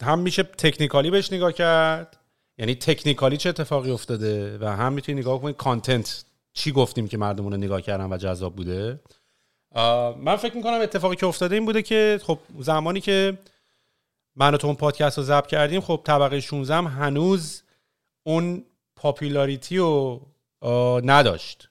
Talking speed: 150 wpm